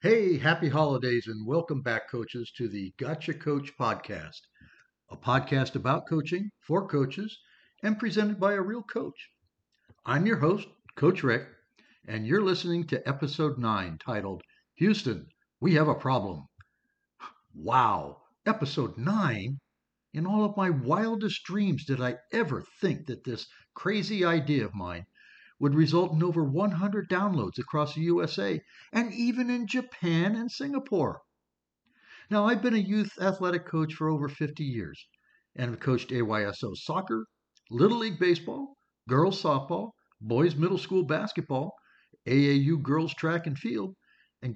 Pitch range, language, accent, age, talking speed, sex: 135-200 Hz, English, American, 60-79, 145 wpm, male